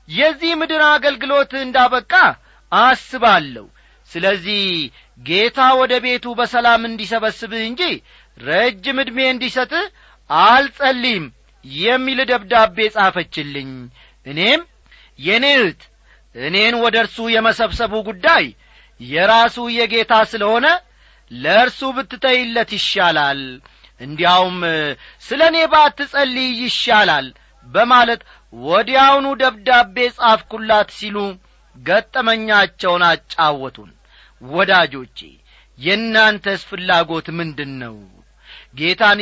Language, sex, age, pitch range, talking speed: Amharic, male, 40-59, 170-250 Hz, 70 wpm